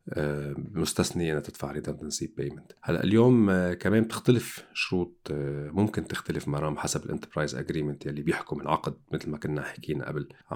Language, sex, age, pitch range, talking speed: Arabic, male, 40-59, 75-95 Hz, 140 wpm